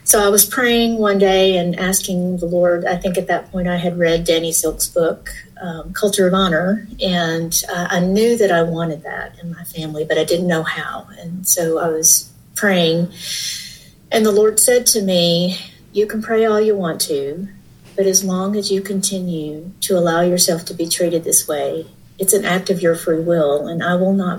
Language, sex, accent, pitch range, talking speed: English, female, American, 170-195 Hz, 205 wpm